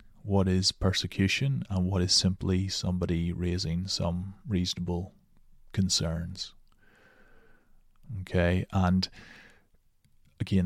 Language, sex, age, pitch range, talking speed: English, male, 30-49, 90-100 Hz, 85 wpm